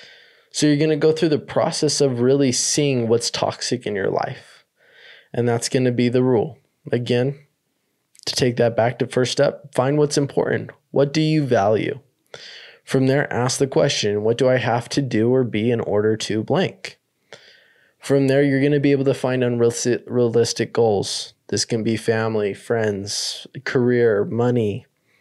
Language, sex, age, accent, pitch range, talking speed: English, male, 20-39, American, 115-140 Hz, 175 wpm